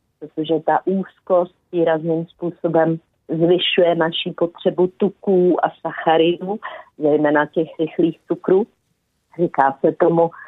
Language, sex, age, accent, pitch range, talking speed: Czech, female, 40-59, native, 165-195 Hz, 105 wpm